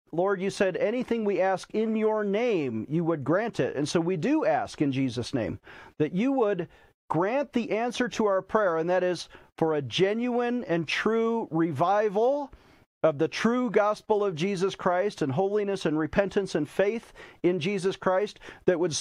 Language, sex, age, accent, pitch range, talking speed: English, male, 40-59, American, 160-215 Hz, 180 wpm